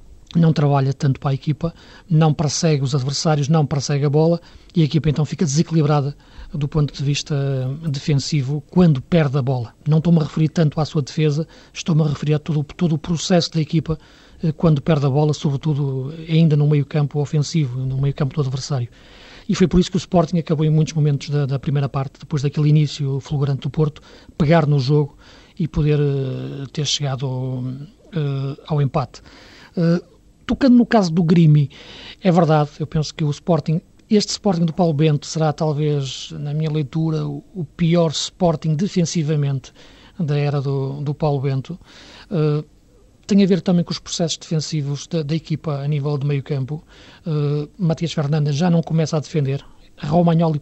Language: Portuguese